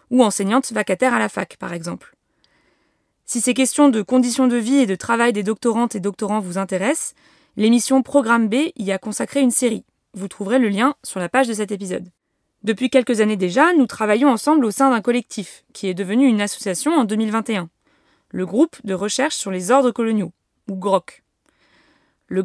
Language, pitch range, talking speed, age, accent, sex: French, 205-270 Hz, 190 wpm, 20-39, French, female